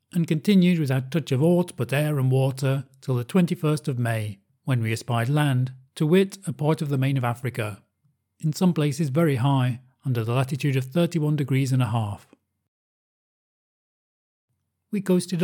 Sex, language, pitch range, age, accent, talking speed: male, English, 120-155 Hz, 40-59, British, 170 wpm